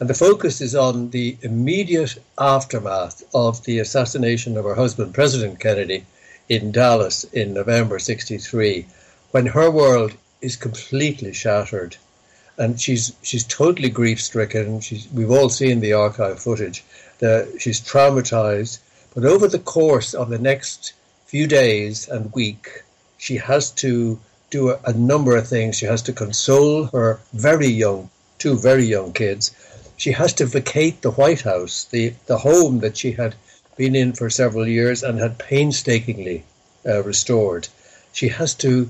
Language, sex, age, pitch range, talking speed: English, male, 60-79, 110-130 Hz, 155 wpm